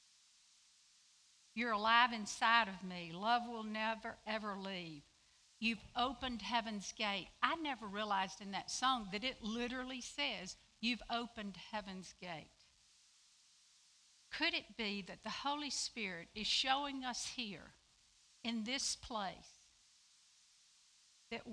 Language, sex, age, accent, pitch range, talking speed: English, female, 60-79, American, 210-255 Hz, 120 wpm